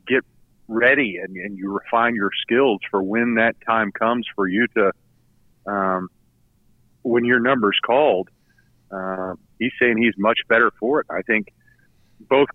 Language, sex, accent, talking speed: English, male, American, 150 wpm